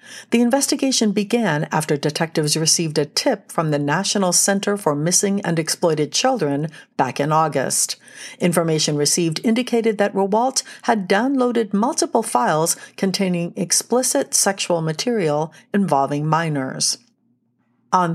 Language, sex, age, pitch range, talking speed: English, female, 60-79, 150-210 Hz, 120 wpm